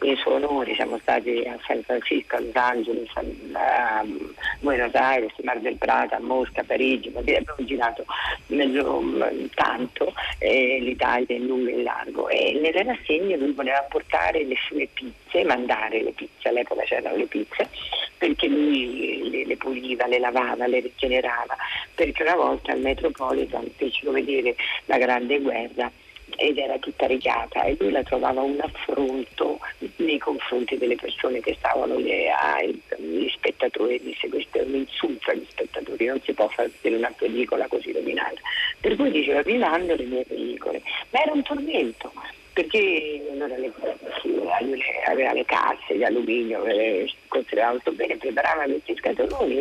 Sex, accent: female, native